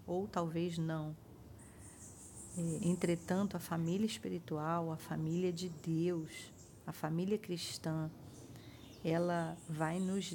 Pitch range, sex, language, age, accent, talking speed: 160-180 Hz, female, Portuguese, 40-59, Brazilian, 100 wpm